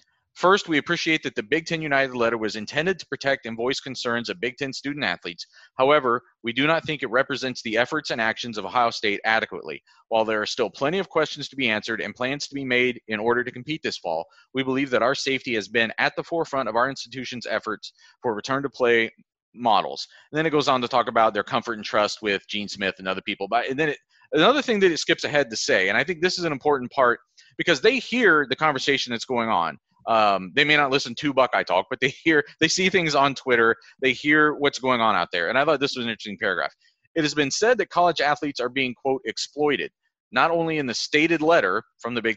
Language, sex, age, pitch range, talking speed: English, male, 30-49, 115-150 Hz, 240 wpm